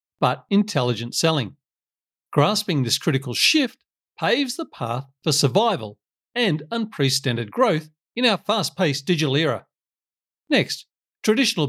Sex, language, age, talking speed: male, English, 50-69, 120 wpm